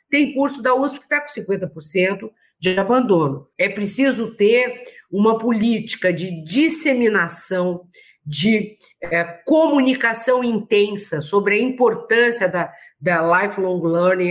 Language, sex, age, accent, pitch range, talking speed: Portuguese, female, 50-69, Brazilian, 190-290 Hz, 115 wpm